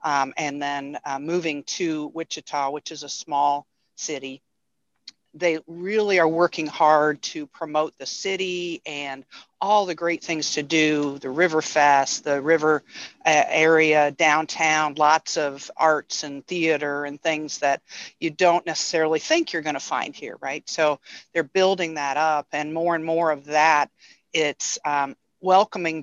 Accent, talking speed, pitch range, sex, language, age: American, 155 wpm, 150-175 Hz, female, English, 50-69